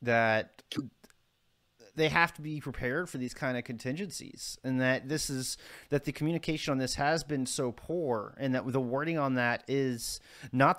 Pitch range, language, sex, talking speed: 120-145 Hz, English, male, 180 wpm